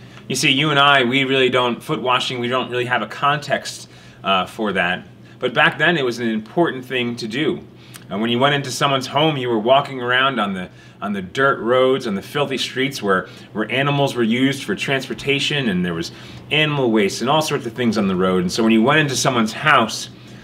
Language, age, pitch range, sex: English, 30-49, 105-140 Hz, male